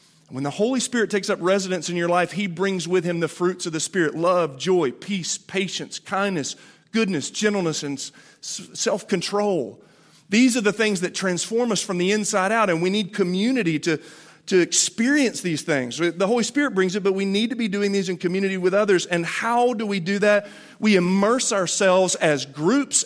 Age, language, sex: 40-59, English, male